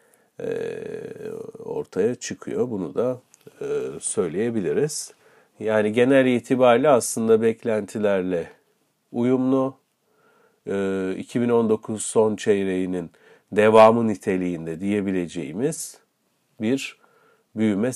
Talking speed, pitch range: 65 wpm, 95-130 Hz